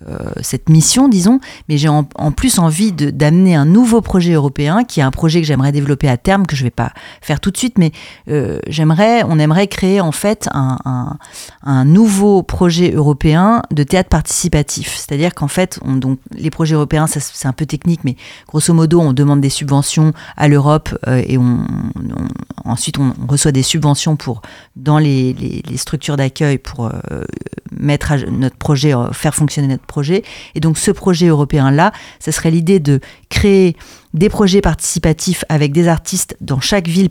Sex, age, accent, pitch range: female, 40-59, French, 140-175 Hz